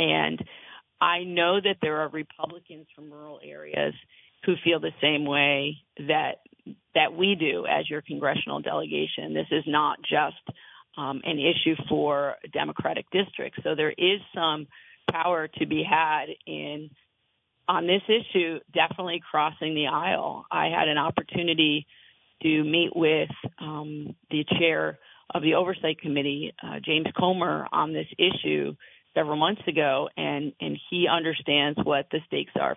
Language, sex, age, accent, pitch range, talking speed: English, female, 50-69, American, 150-175 Hz, 145 wpm